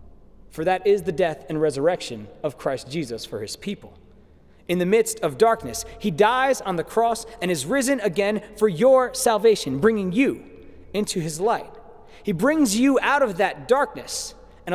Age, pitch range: 30-49, 195-270 Hz